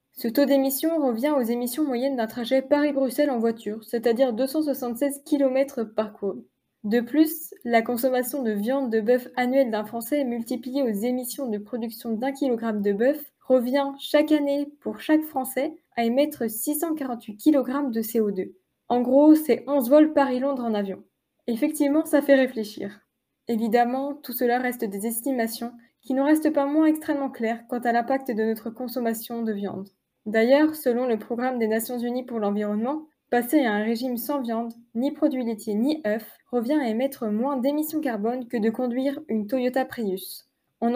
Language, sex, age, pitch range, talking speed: French, female, 20-39, 225-280 Hz, 170 wpm